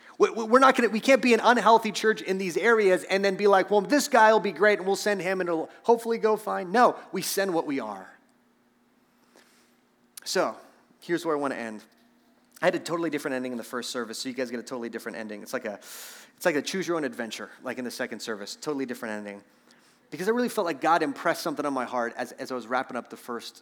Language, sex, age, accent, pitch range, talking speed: English, male, 30-49, American, 125-190 Hz, 250 wpm